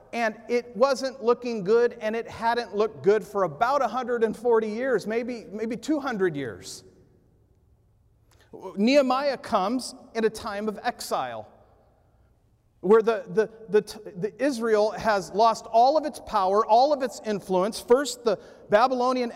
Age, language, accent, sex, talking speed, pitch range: 40-59, English, American, male, 135 wpm, 190-240 Hz